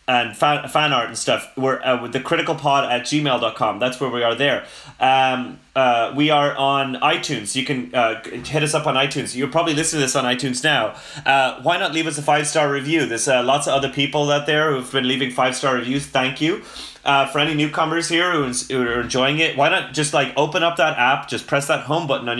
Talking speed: 235 wpm